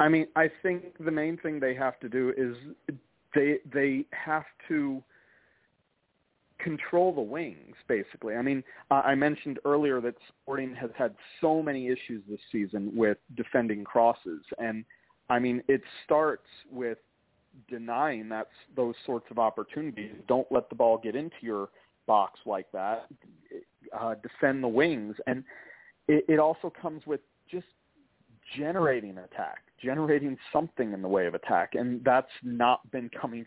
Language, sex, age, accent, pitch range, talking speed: English, male, 40-59, American, 120-155 Hz, 150 wpm